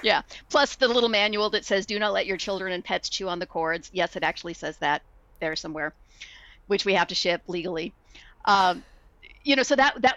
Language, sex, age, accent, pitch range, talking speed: English, female, 40-59, American, 175-210 Hz, 220 wpm